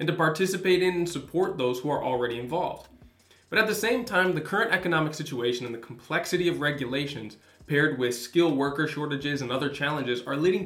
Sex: male